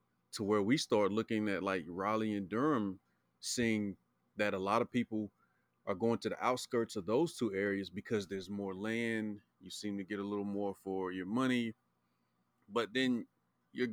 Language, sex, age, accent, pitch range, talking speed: English, male, 30-49, American, 95-115 Hz, 180 wpm